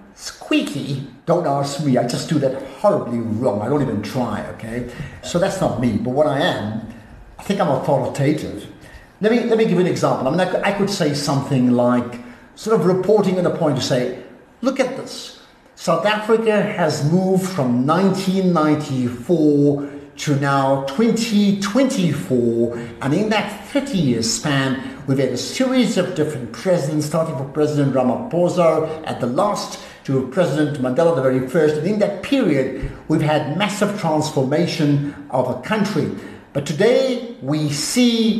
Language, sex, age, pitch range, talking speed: English, male, 50-69, 135-195 Hz, 160 wpm